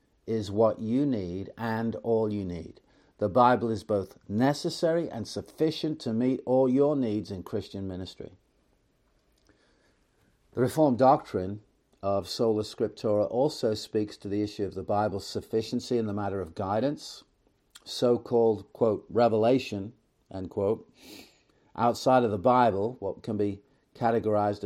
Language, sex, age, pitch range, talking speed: English, male, 50-69, 100-120 Hz, 135 wpm